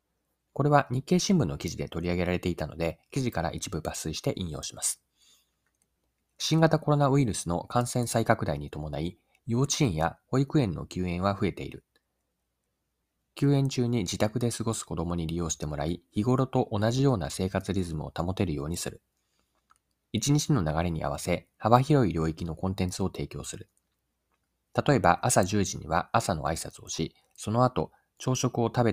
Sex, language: male, Japanese